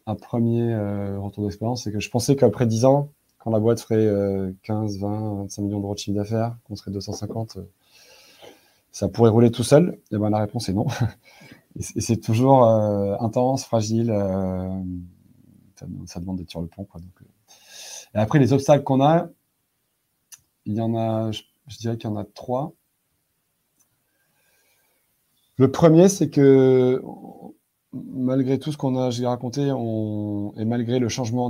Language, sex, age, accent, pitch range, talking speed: French, male, 20-39, French, 100-120 Hz, 175 wpm